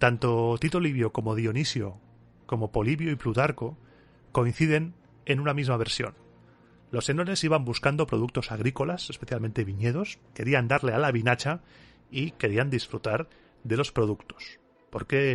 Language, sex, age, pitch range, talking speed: Spanish, male, 30-49, 115-145 Hz, 135 wpm